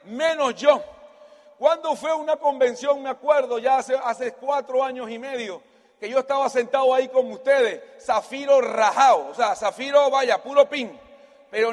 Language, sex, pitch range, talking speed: Spanish, male, 245-290 Hz, 160 wpm